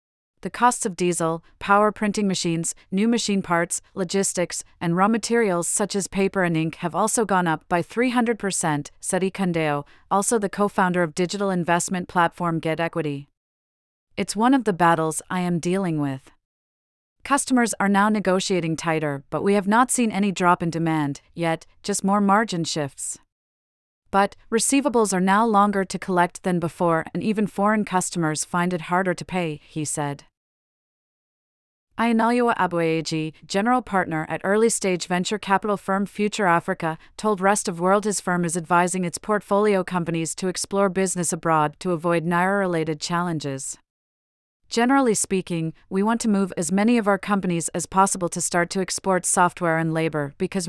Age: 40-59